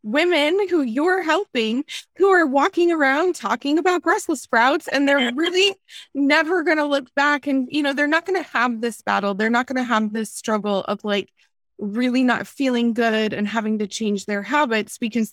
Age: 20-39